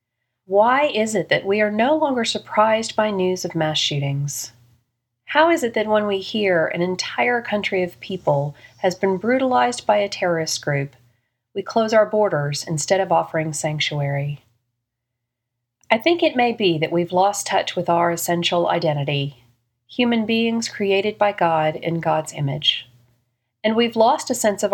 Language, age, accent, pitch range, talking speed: English, 40-59, American, 140-210 Hz, 165 wpm